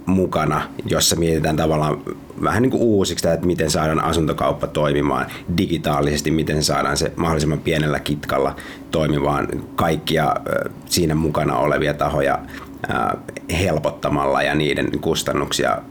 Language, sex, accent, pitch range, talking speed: Finnish, male, native, 75-85 Hz, 115 wpm